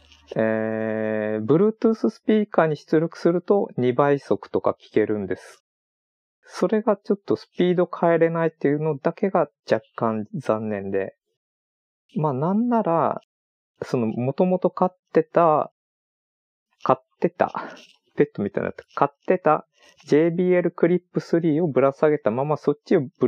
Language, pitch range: Japanese, 110-165 Hz